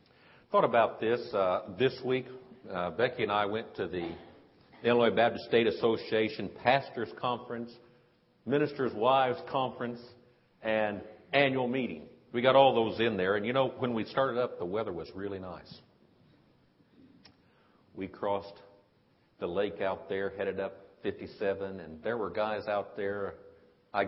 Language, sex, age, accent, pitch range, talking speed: English, male, 50-69, American, 100-130 Hz, 150 wpm